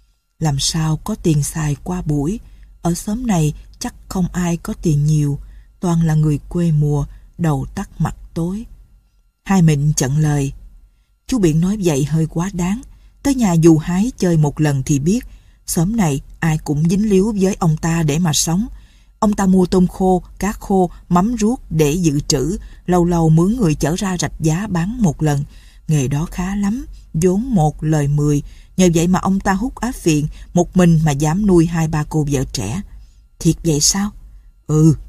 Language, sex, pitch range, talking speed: Vietnamese, female, 150-190 Hz, 190 wpm